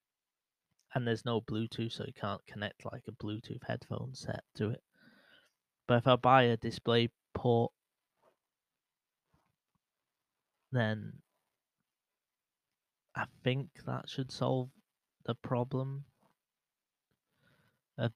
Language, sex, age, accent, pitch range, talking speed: English, male, 20-39, British, 110-130 Hz, 100 wpm